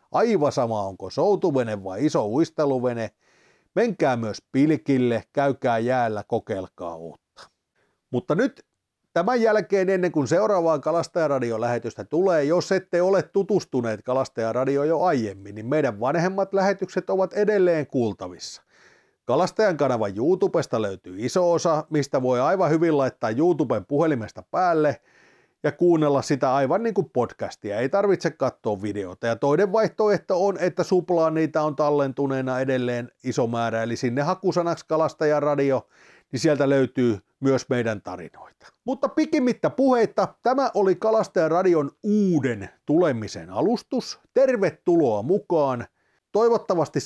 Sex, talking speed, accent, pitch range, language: male, 125 wpm, native, 130-190 Hz, Finnish